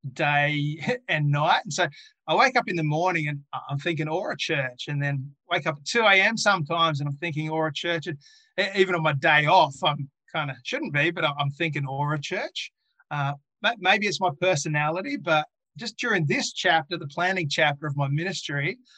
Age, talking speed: 30-49, 200 wpm